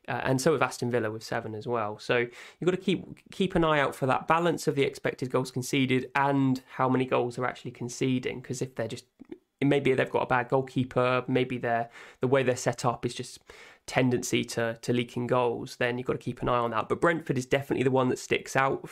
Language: English